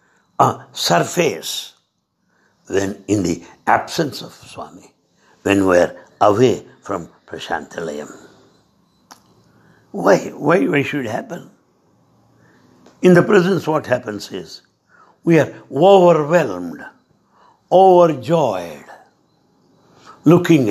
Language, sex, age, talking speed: English, male, 60-79, 95 wpm